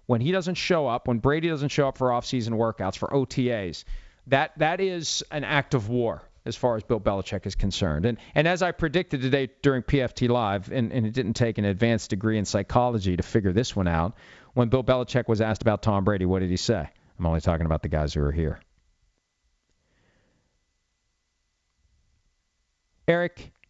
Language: English